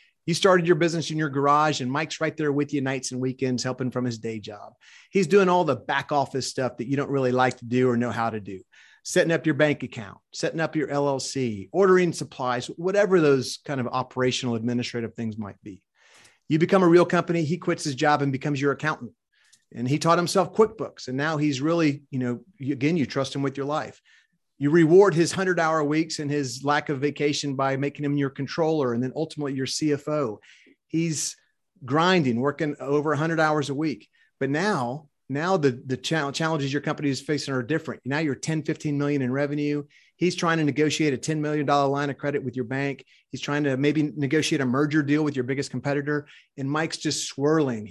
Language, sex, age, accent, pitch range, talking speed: English, male, 30-49, American, 135-160 Hz, 210 wpm